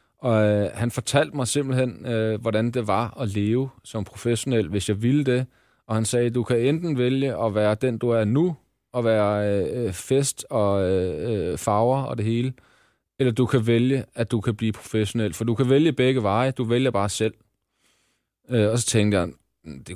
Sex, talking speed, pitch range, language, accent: male, 200 wpm, 105-125 Hz, Danish, native